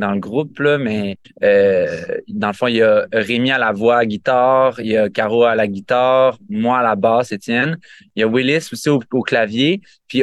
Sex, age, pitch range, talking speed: male, 20-39, 115-140 Hz, 235 wpm